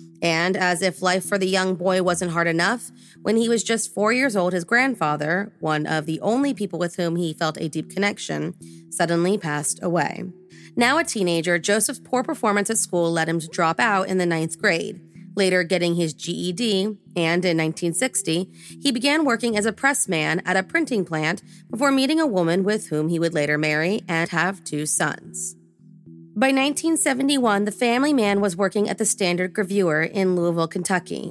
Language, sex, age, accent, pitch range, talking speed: English, female, 30-49, American, 165-220 Hz, 190 wpm